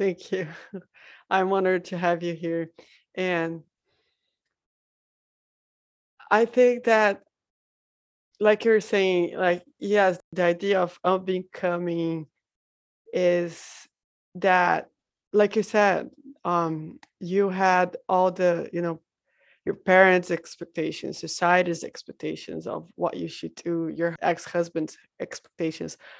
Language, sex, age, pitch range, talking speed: English, female, 20-39, 170-195 Hz, 110 wpm